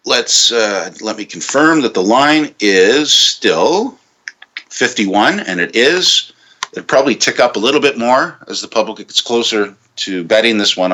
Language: English